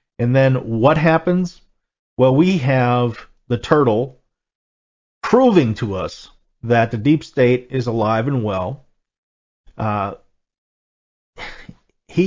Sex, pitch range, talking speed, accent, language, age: male, 115-150 Hz, 110 wpm, American, English, 40-59